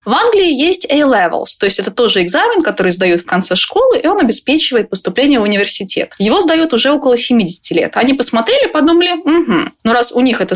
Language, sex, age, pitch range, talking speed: Russian, female, 20-39, 195-295 Hz, 205 wpm